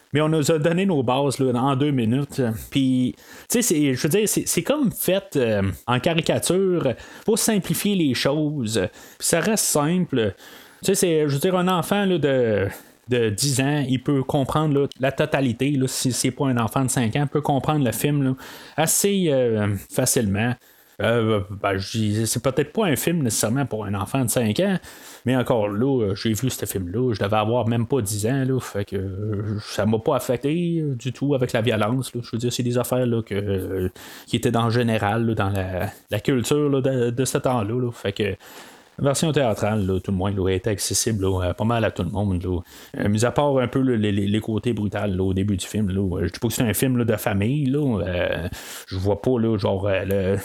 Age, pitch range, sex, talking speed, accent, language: 30-49, 105-140 Hz, male, 220 wpm, Canadian, French